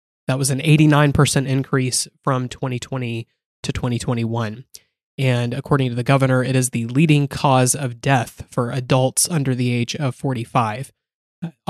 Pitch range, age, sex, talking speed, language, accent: 125-145 Hz, 20-39, male, 145 wpm, English, American